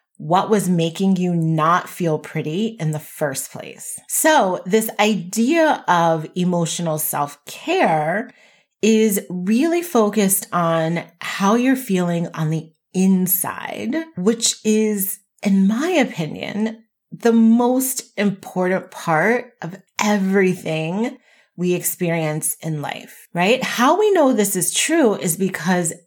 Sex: female